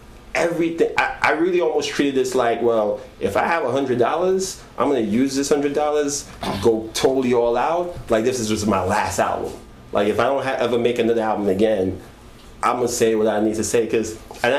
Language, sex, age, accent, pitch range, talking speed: English, male, 30-49, American, 110-140 Hz, 215 wpm